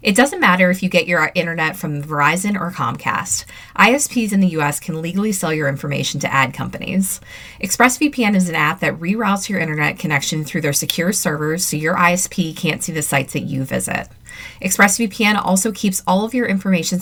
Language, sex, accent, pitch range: English, female, American, 150-195 Hz